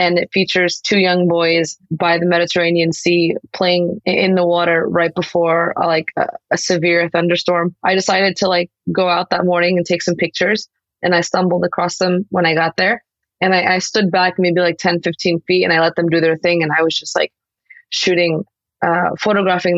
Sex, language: female, English